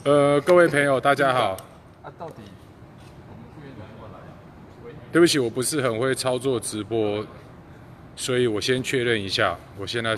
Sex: male